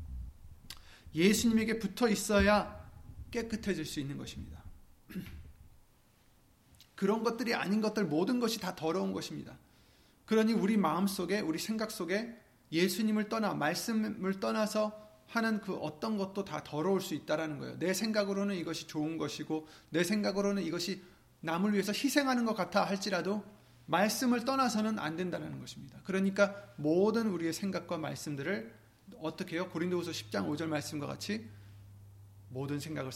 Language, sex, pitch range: Korean, male, 140-205 Hz